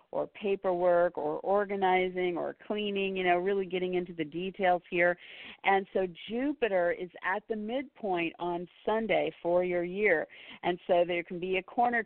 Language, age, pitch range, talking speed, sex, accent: English, 50-69, 175-205 Hz, 165 wpm, female, American